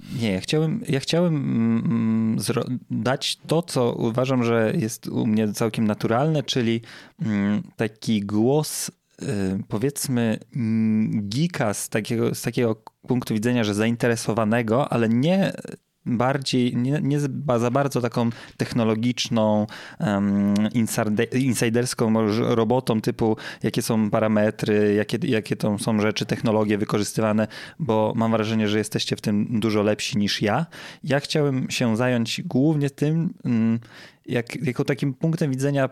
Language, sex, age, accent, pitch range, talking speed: Polish, male, 20-39, native, 110-135 Hz, 115 wpm